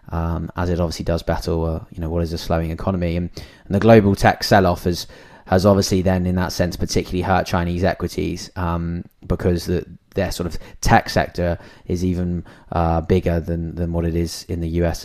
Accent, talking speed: British, 205 wpm